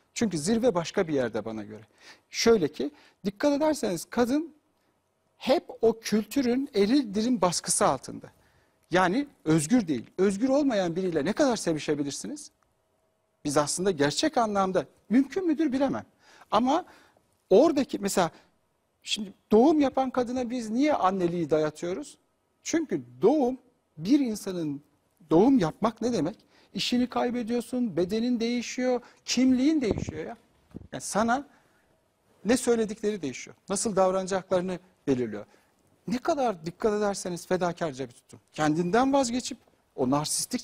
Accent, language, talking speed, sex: native, Turkish, 115 wpm, male